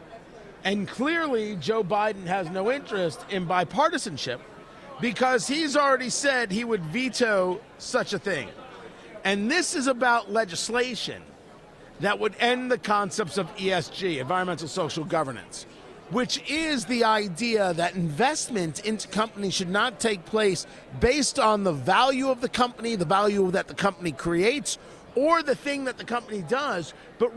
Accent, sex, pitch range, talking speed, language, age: American, male, 180-245 Hz, 145 wpm, English, 50-69